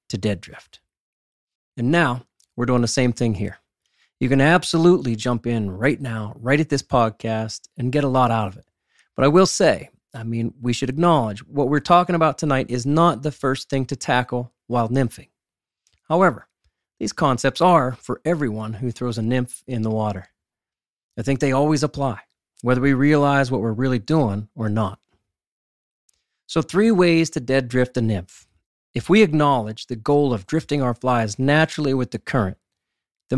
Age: 40-59